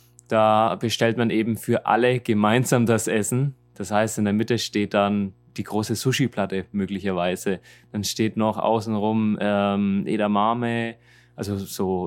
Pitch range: 110-130 Hz